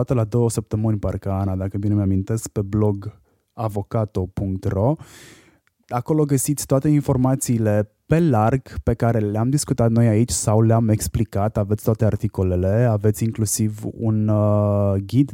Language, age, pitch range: Romanian, 20-39, 100-120 Hz